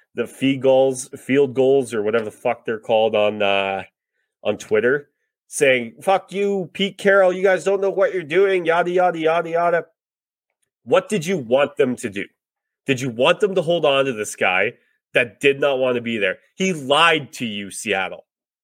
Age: 30-49